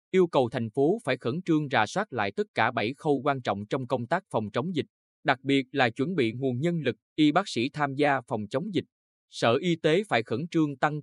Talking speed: 245 wpm